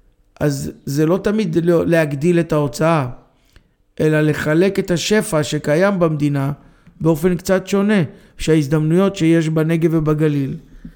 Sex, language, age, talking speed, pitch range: male, Hebrew, 50-69, 110 wpm, 150-180 Hz